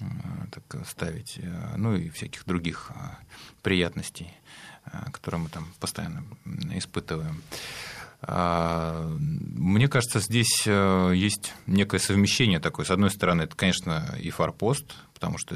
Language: Russian